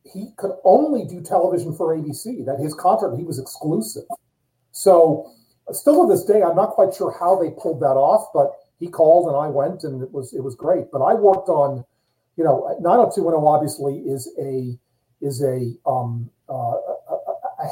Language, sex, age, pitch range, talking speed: English, male, 40-59, 135-170 Hz, 185 wpm